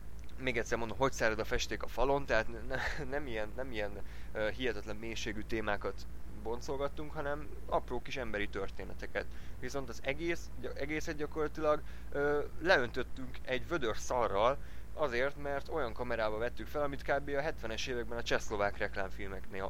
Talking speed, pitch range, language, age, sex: 150 wpm, 95-120 Hz, Hungarian, 20-39, male